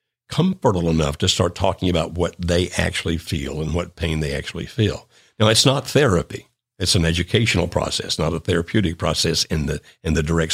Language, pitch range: English, 80-110 Hz